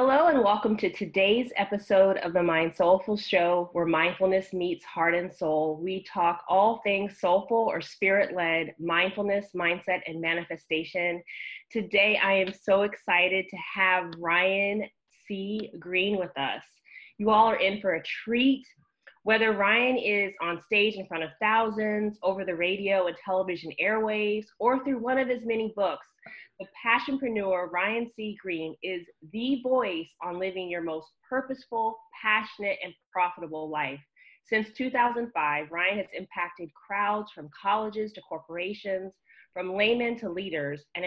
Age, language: 20-39, English